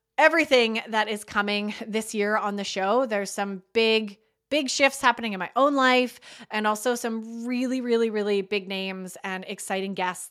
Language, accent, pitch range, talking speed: English, American, 205-255 Hz, 175 wpm